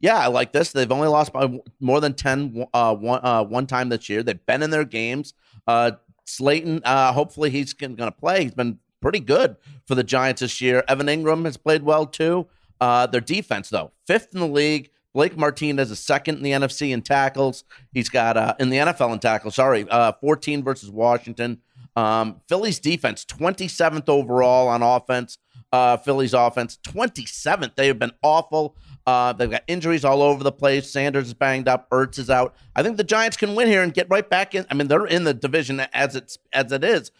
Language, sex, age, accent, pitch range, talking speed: English, male, 50-69, American, 120-150 Hz, 205 wpm